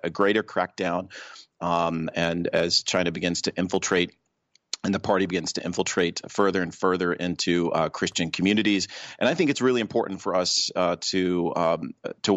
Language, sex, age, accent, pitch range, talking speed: English, male, 30-49, American, 90-105 Hz, 170 wpm